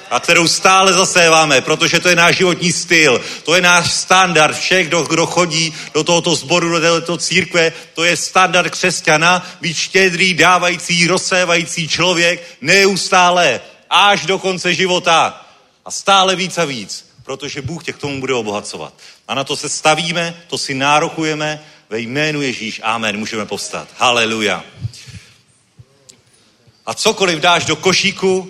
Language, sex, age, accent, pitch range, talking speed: Czech, male, 40-59, native, 150-180 Hz, 145 wpm